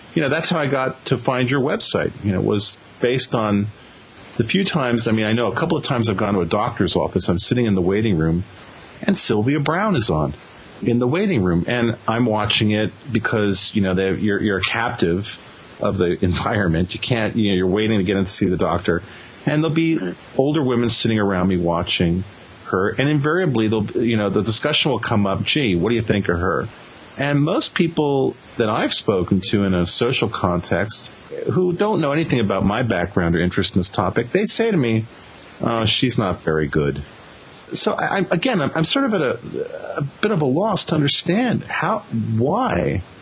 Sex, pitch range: male, 95-135 Hz